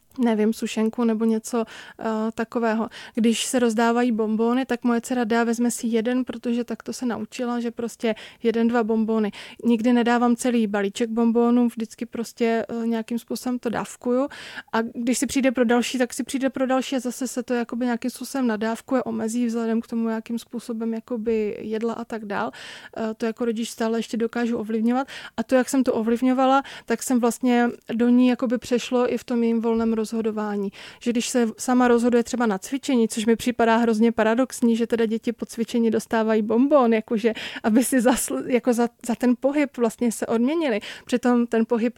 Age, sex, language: 20-39, female, Czech